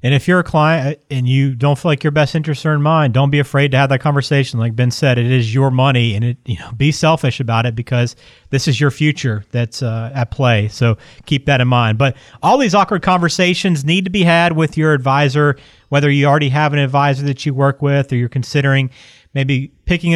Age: 30-49